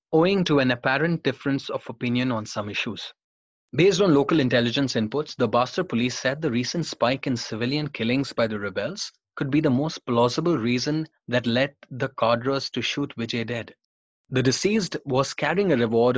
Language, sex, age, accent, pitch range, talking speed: English, male, 30-49, Indian, 115-150 Hz, 180 wpm